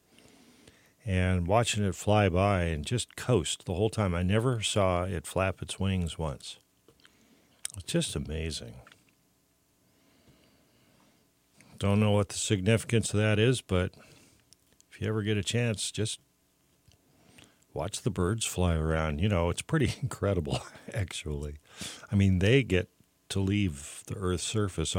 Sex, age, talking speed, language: male, 50-69, 140 wpm, English